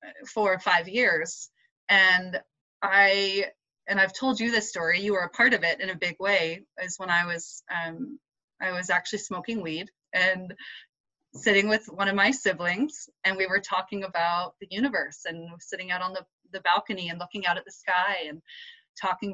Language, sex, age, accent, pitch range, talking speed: English, female, 20-39, American, 180-225 Hz, 190 wpm